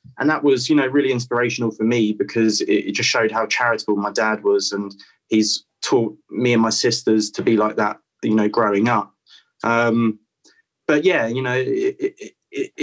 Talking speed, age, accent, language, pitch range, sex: 180 wpm, 20-39, British, English, 115-145 Hz, male